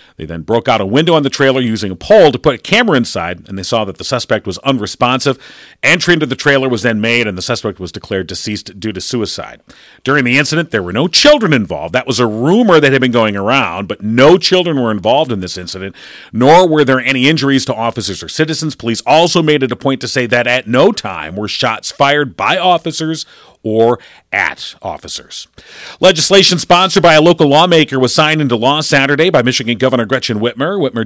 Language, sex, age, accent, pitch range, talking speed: English, male, 40-59, American, 110-150 Hz, 215 wpm